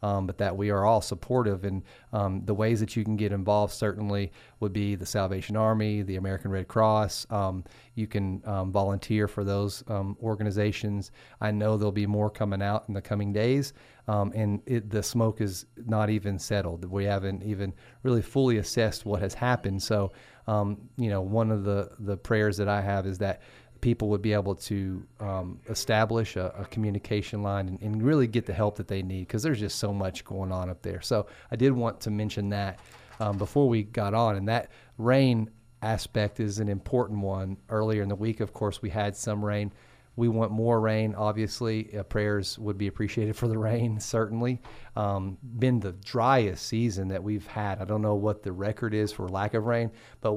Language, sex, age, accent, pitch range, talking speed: English, male, 30-49, American, 100-115 Hz, 205 wpm